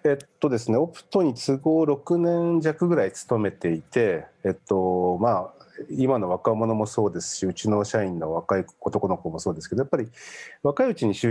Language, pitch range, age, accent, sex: Japanese, 100-140 Hz, 40-59, native, male